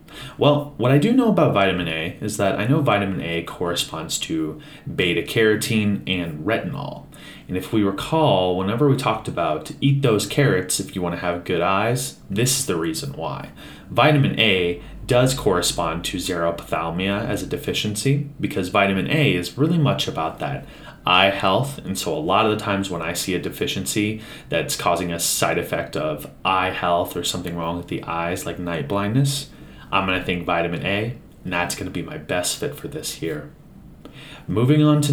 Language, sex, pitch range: English, male, 90-140 Hz